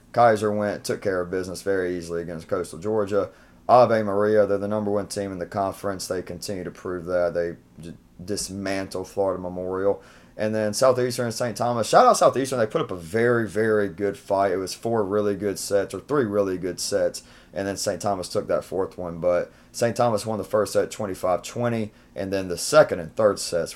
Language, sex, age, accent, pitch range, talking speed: English, male, 30-49, American, 90-105 Hz, 205 wpm